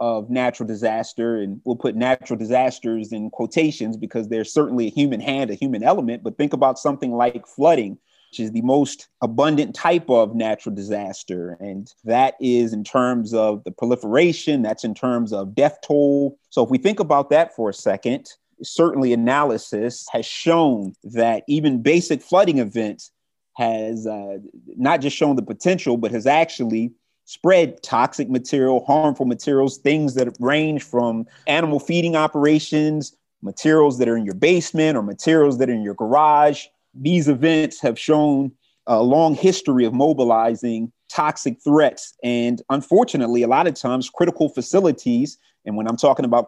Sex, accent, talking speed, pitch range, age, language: male, American, 160 wpm, 115-150 Hz, 30-49, English